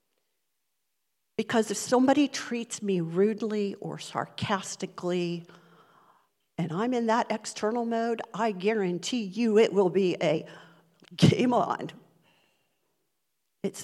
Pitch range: 175-215 Hz